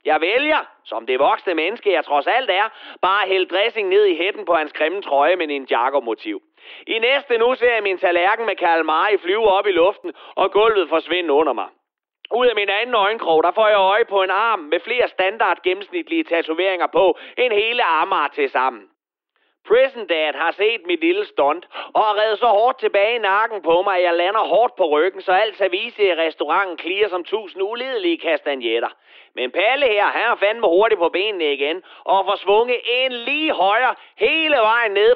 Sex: male